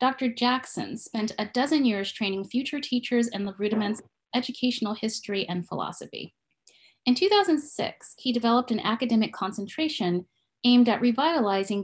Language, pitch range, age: English, 200-260 Hz, 30-49